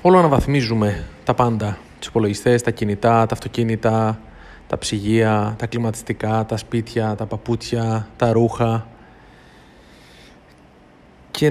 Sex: male